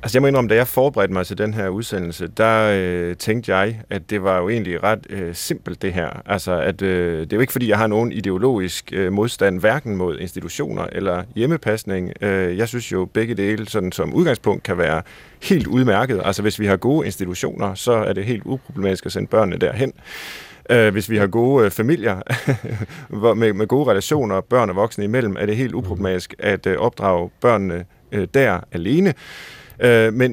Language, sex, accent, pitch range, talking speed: Danish, male, native, 95-120 Hz, 200 wpm